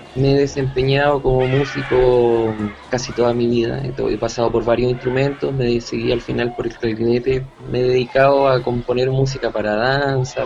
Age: 20-39